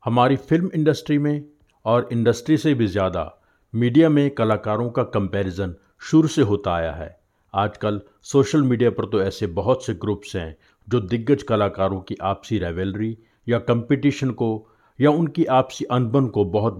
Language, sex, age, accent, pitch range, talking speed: Hindi, male, 50-69, native, 95-125 Hz, 155 wpm